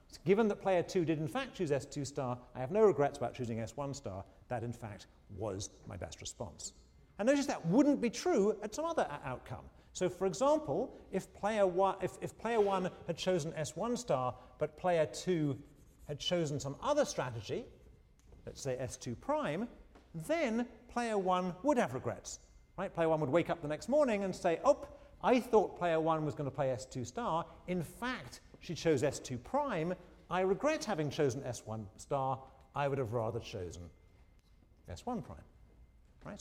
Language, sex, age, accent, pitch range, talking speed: English, male, 40-59, British, 125-210 Hz, 180 wpm